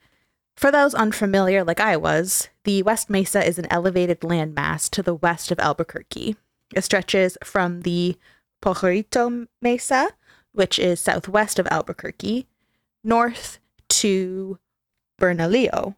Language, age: English, 20-39